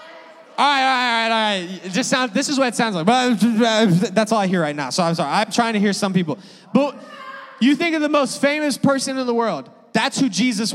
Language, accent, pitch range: English, American, 195-235 Hz